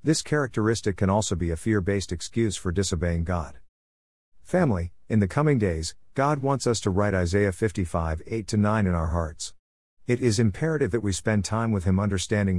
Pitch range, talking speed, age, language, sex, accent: 85-115 Hz, 175 wpm, 50-69, English, male, American